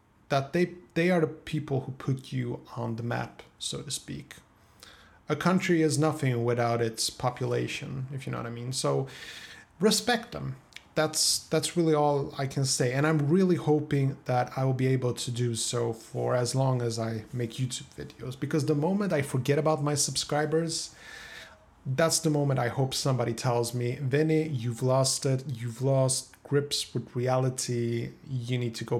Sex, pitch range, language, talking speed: male, 120-150 Hz, English, 180 wpm